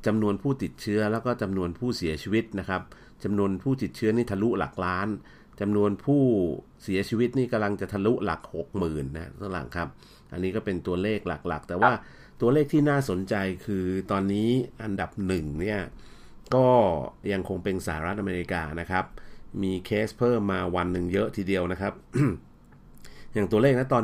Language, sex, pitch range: Thai, male, 90-110 Hz